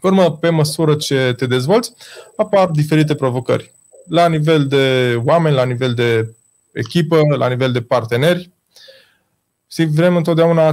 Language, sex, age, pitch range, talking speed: Romanian, male, 20-39, 130-175 Hz, 140 wpm